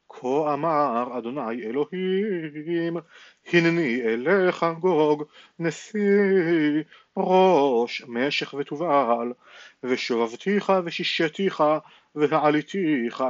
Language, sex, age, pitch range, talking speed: Hebrew, male, 40-59, 135-175 Hz, 65 wpm